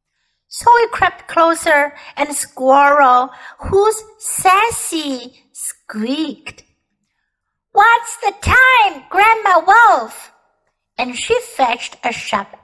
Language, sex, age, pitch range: Chinese, female, 60-79, 265-390 Hz